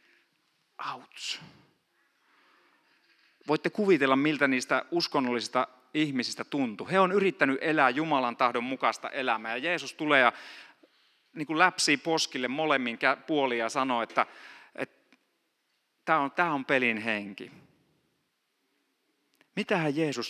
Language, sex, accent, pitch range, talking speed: Finnish, male, native, 120-150 Hz, 110 wpm